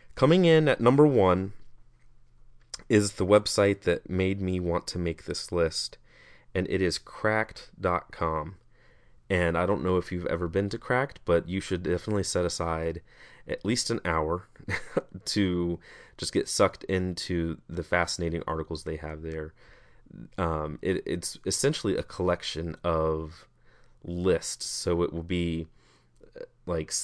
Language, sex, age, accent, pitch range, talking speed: English, male, 30-49, American, 85-100 Hz, 140 wpm